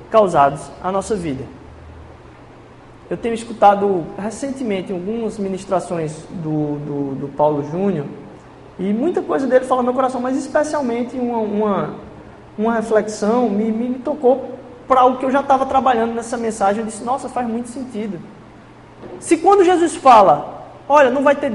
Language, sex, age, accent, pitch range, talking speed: Portuguese, male, 20-39, Brazilian, 205-295 Hz, 155 wpm